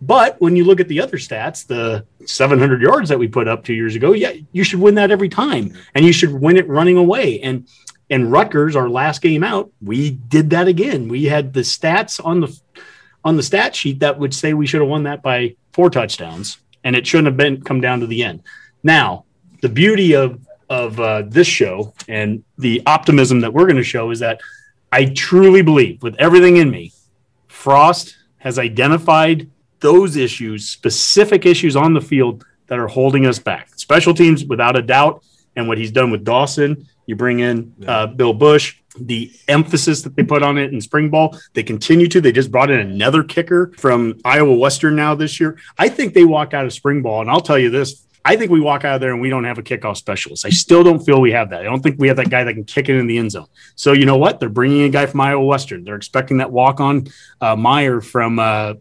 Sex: male